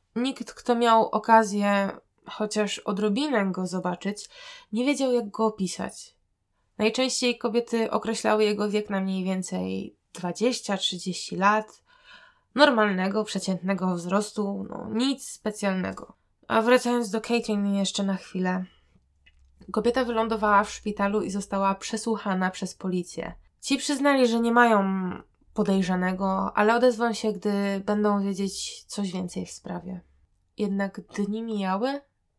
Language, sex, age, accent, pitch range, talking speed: Polish, female, 20-39, native, 195-225 Hz, 120 wpm